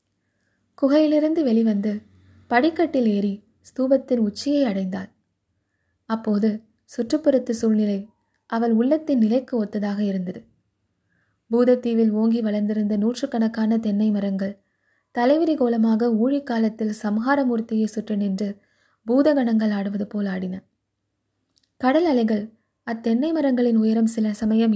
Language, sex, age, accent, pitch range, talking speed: Tamil, female, 20-39, native, 205-245 Hz, 90 wpm